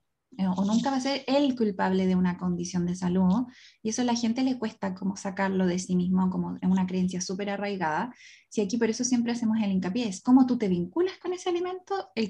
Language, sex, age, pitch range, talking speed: Spanish, female, 20-39, 190-245 Hz, 225 wpm